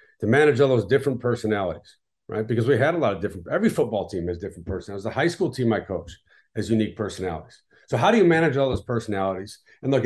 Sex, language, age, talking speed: male, English, 50-69, 235 wpm